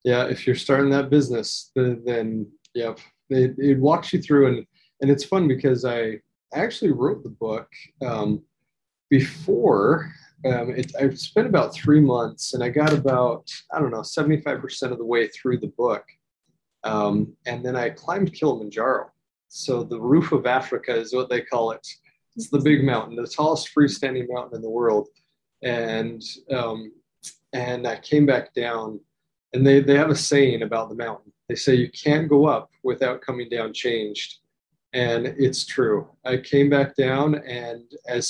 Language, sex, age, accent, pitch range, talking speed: English, male, 20-39, American, 115-145 Hz, 170 wpm